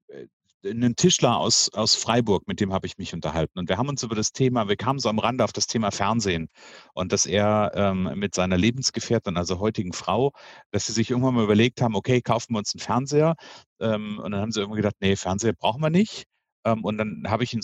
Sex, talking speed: male, 230 wpm